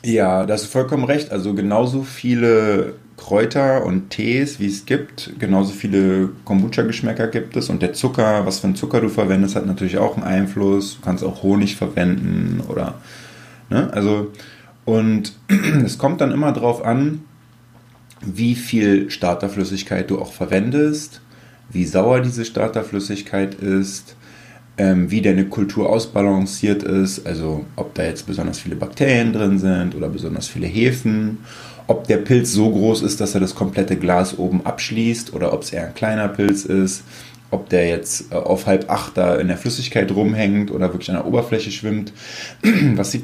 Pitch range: 95-120 Hz